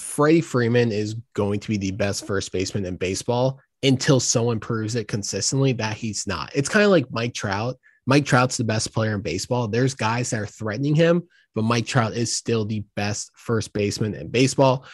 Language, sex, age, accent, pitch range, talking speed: English, male, 20-39, American, 110-135 Hz, 200 wpm